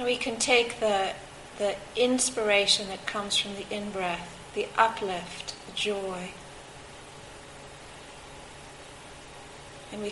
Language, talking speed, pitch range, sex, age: English, 105 wpm, 140-215 Hz, female, 40-59